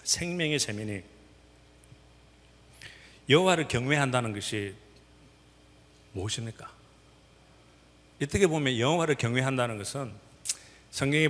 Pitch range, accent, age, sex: 95-135 Hz, native, 40-59, male